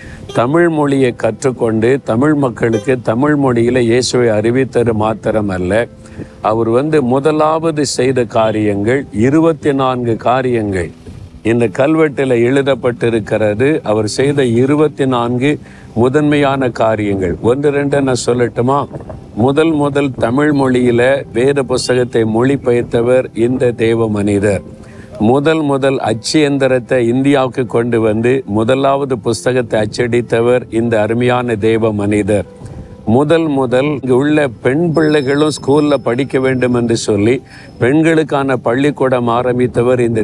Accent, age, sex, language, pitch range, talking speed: native, 50-69, male, Tamil, 115-140 Hz, 100 wpm